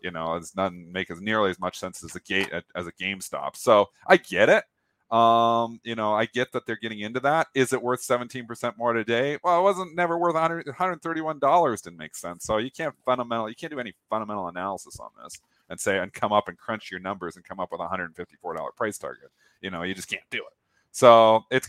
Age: 30-49